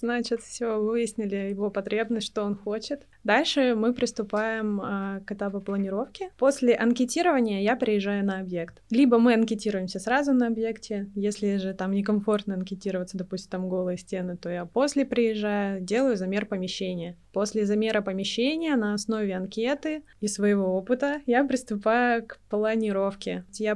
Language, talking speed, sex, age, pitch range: Russian, 145 wpm, female, 20-39, 200-235 Hz